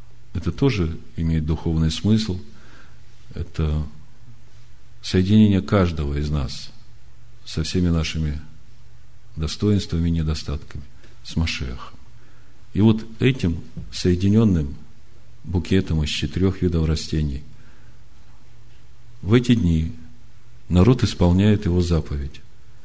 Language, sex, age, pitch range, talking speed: Russian, male, 50-69, 75-105 Hz, 90 wpm